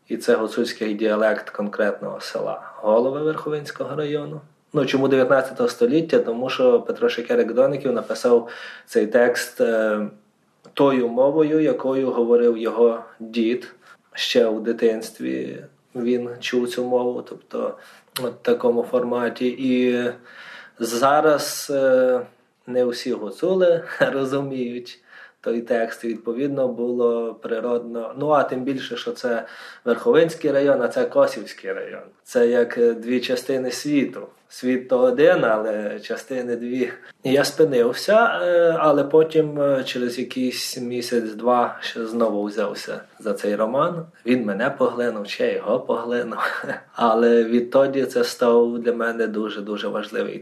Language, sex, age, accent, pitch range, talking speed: Ukrainian, male, 20-39, Croatian, 120-150 Hz, 120 wpm